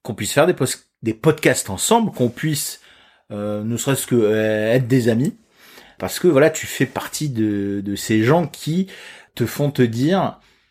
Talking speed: 185 wpm